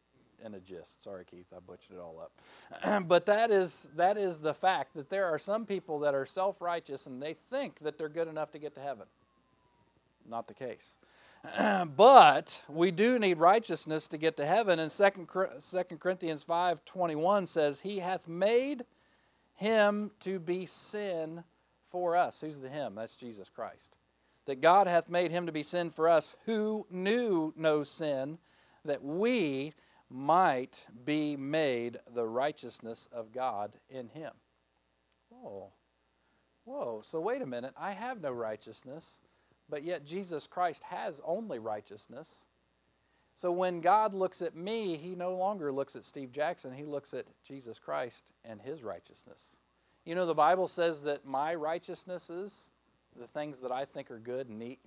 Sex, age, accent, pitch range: male, 50-69, American, 130-180 Hz